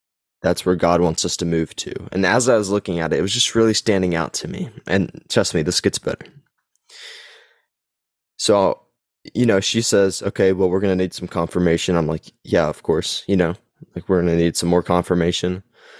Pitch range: 85-100 Hz